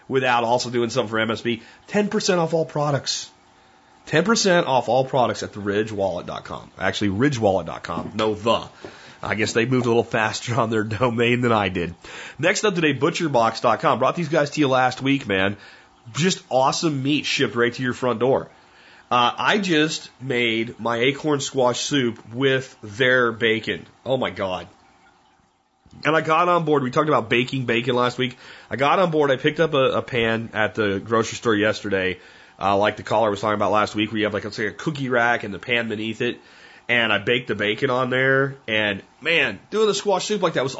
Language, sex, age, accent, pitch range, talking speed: English, male, 30-49, American, 115-150 Hz, 200 wpm